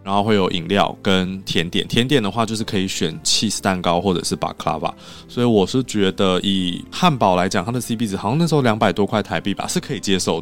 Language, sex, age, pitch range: Chinese, male, 20-39, 95-125 Hz